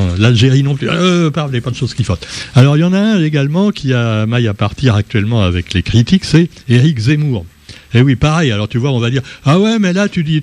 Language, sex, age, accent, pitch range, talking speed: French, male, 60-79, French, 115-160 Hz, 270 wpm